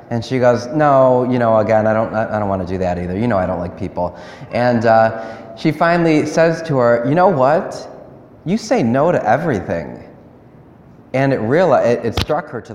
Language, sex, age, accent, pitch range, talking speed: English, male, 30-49, American, 110-145 Hz, 215 wpm